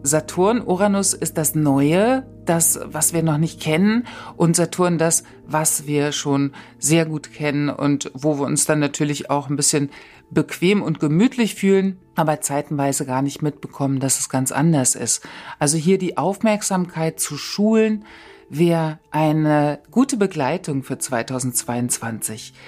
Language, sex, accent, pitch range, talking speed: German, female, German, 145-190 Hz, 145 wpm